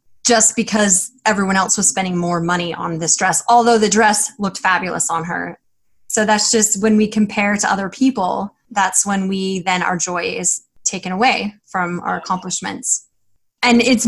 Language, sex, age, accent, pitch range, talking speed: English, female, 20-39, American, 190-235 Hz, 175 wpm